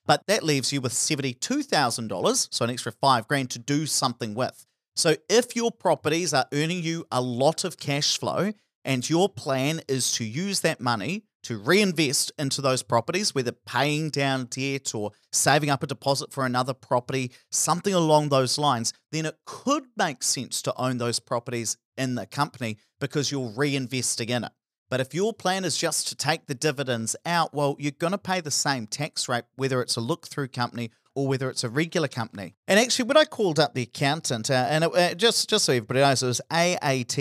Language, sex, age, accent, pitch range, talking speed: English, male, 40-59, Australian, 125-155 Hz, 200 wpm